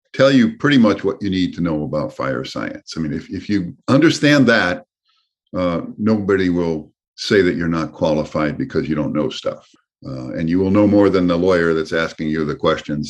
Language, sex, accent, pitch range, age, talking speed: English, male, American, 80-105 Hz, 50-69, 210 wpm